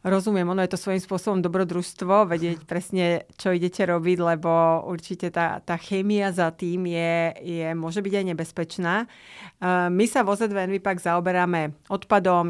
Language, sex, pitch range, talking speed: Slovak, female, 165-190 Hz, 160 wpm